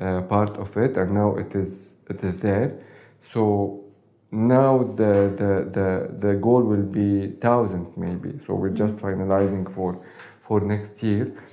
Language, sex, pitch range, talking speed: English, male, 95-115 Hz, 155 wpm